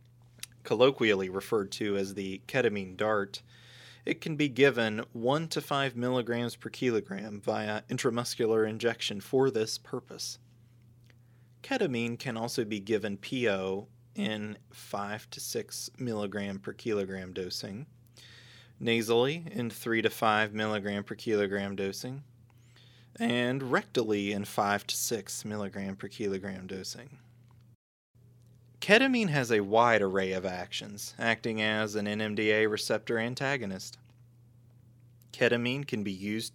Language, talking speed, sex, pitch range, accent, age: English, 120 wpm, male, 105-120 Hz, American, 20-39